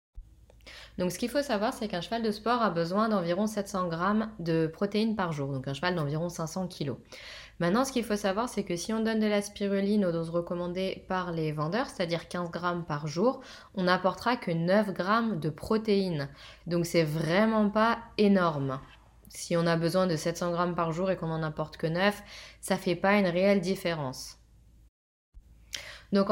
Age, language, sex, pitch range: 20-39, French, female, 170-210 Hz